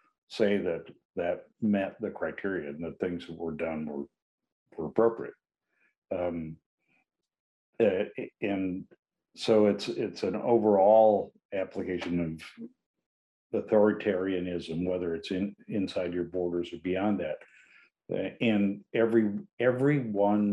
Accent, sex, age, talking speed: American, male, 60-79, 115 wpm